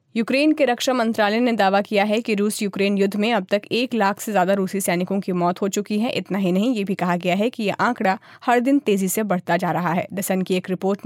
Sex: female